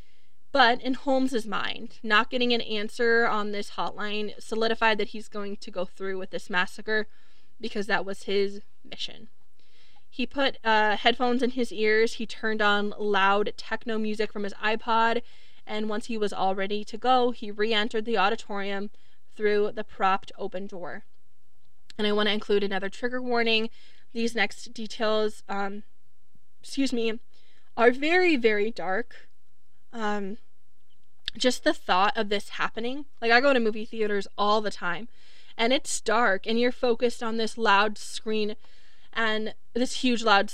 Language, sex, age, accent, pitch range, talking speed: English, female, 20-39, American, 205-235 Hz, 160 wpm